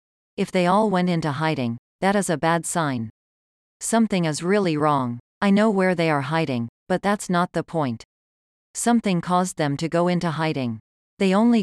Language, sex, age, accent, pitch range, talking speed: English, female, 40-59, American, 140-185 Hz, 180 wpm